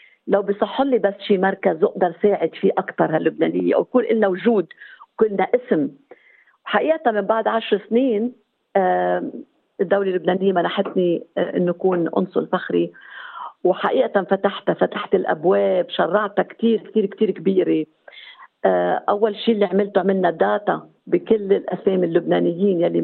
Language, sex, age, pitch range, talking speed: Arabic, female, 50-69, 170-215 Hz, 120 wpm